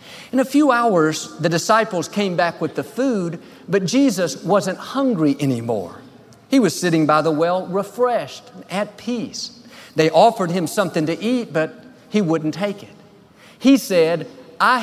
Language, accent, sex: English, American, male